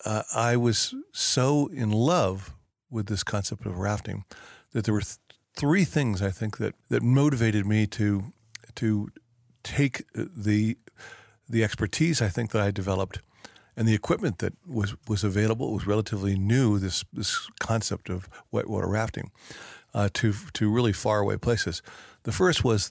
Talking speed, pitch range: 160 wpm, 105-120 Hz